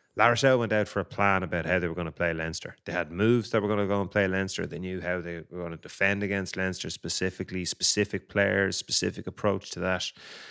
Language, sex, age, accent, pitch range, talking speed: English, male, 30-49, Irish, 90-105 Hz, 245 wpm